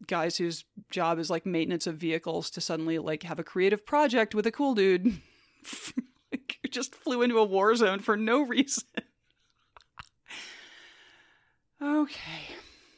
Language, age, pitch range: English, 30-49, 170-220 Hz